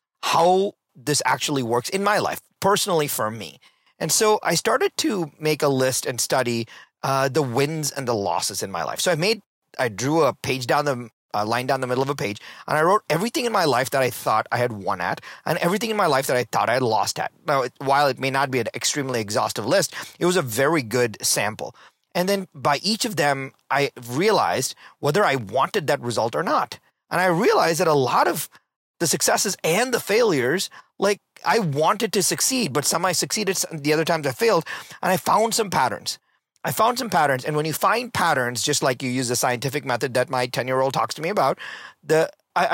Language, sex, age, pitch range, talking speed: English, male, 30-49, 130-180 Hz, 225 wpm